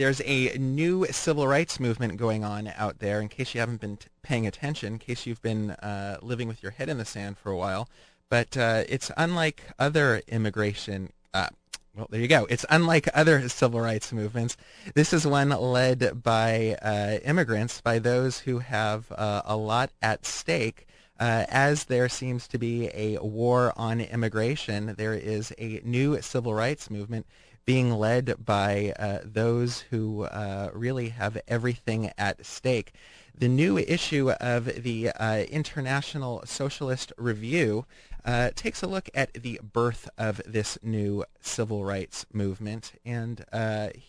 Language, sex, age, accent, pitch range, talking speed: English, male, 30-49, American, 110-130 Hz, 160 wpm